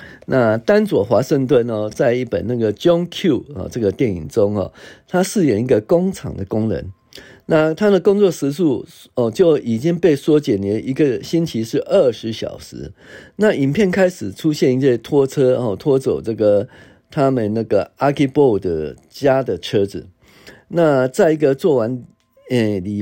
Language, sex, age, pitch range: Chinese, male, 50-69, 110-150 Hz